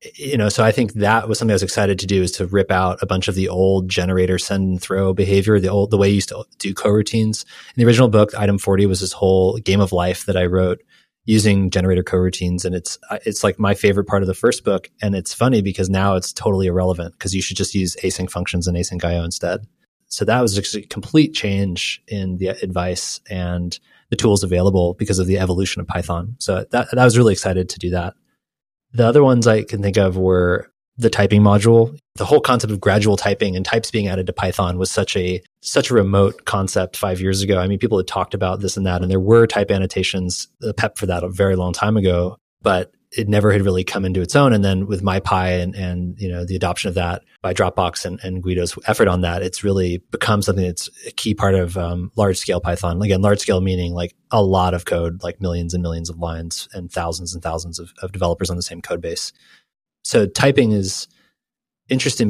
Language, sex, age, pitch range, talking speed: English, male, 30-49, 90-105 Hz, 235 wpm